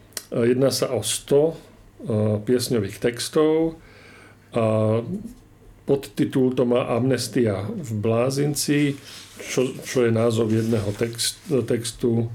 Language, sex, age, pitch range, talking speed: Slovak, male, 50-69, 110-130 Hz, 95 wpm